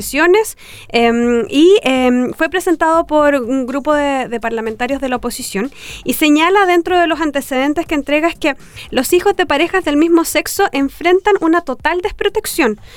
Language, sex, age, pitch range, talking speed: Spanish, female, 20-39, 255-340 Hz, 160 wpm